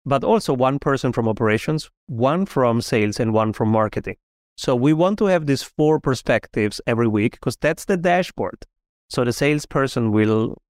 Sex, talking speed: male, 175 wpm